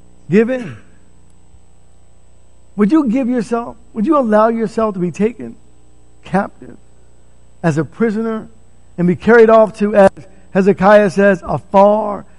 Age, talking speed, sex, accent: 50-69, 125 wpm, male, American